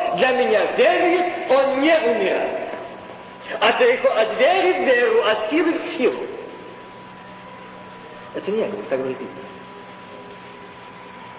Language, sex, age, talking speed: Russian, male, 50-69, 105 wpm